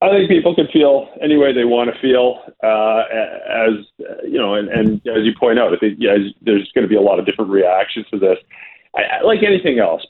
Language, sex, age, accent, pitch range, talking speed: English, male, 40-59, American, 105-150 Hz, 230 wpm